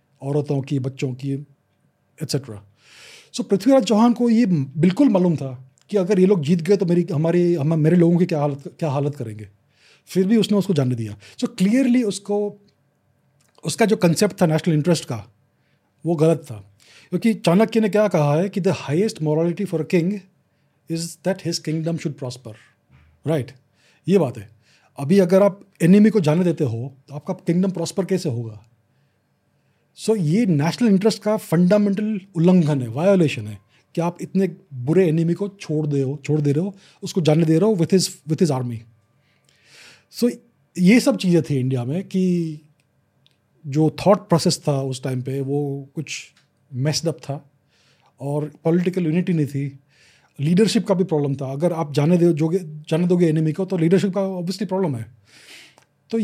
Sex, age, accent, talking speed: male, 30-49, native, 175 wpm